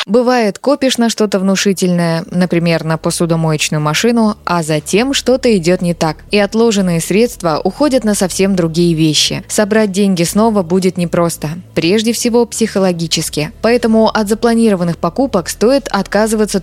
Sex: female